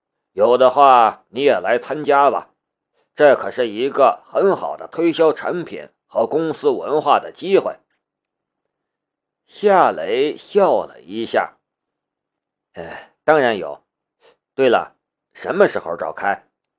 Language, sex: Chinese, male